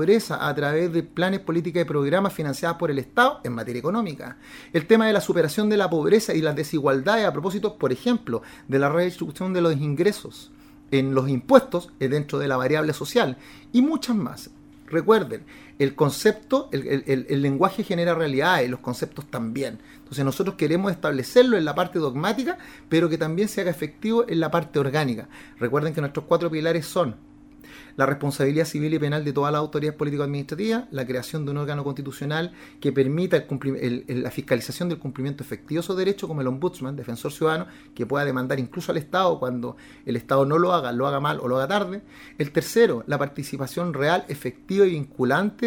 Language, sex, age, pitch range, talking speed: Spanish, male, 30-49, 140-195 Hz, 185 wpm